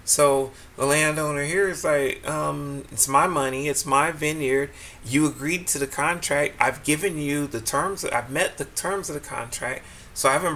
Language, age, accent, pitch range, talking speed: English, 30-49, American, 130-150 Hz, 190 wpm